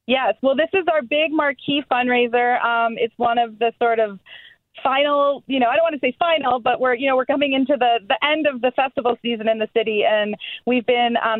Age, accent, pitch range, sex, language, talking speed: 30-49, American, 215-250 Hz, female, English, 235 wpm